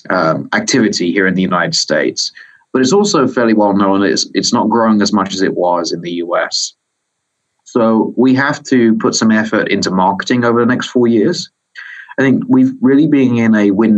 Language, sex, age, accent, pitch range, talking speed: English, male, 30-49, British, 100-115 Hz, 200 wpm